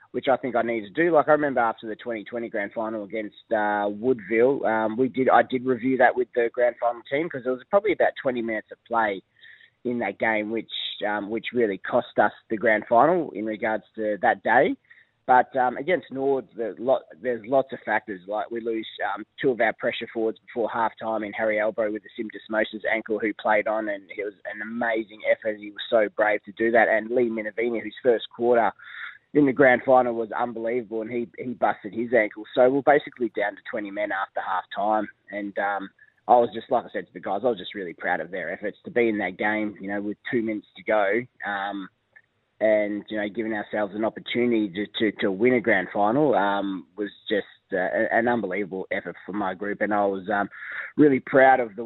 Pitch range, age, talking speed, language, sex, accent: 105-125 Hz, 20-39, 220 wpm, English, male, Australian